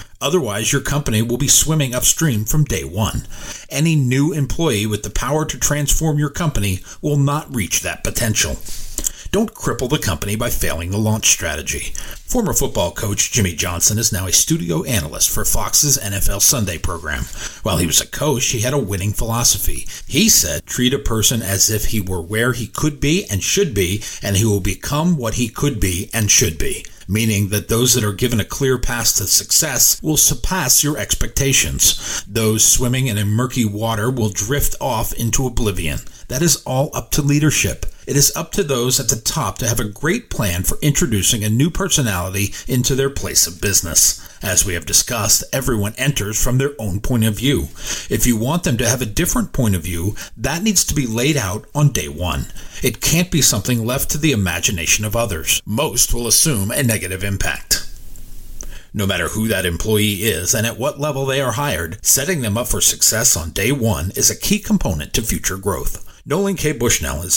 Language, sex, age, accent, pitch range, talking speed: English, male, 40-59, American, 100-140 Hz, 195 wpm